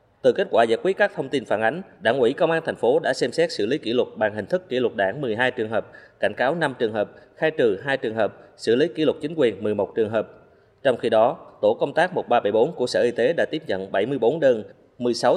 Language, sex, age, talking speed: Vietnamese, male, 20-39, 265 wpm